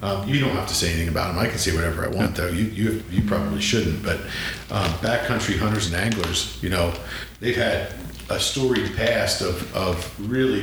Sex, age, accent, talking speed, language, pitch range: male, 50-69, American, 210 wpm, English, 90-110 Hz